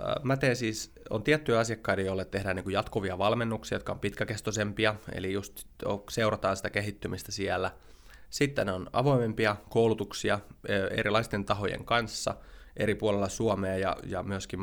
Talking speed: 130 wpm